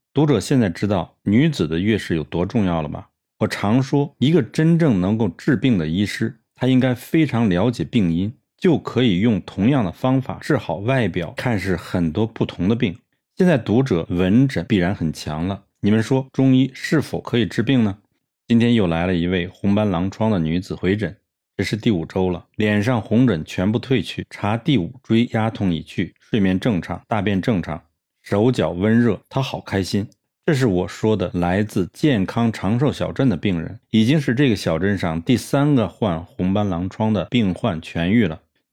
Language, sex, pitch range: Chinese, male, 90-125 Hz